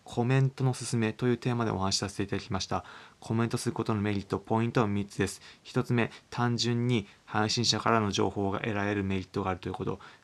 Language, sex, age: Japanese, male, 20-39